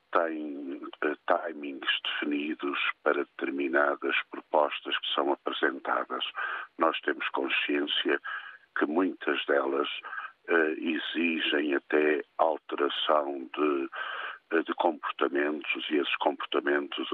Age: 50-69